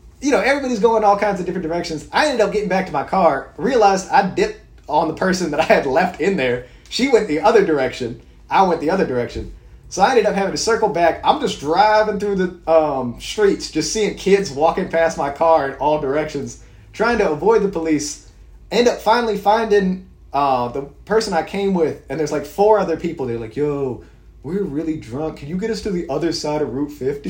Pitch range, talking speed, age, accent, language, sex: 145-205 Hz, 225 wpm, 30-49, American, English, male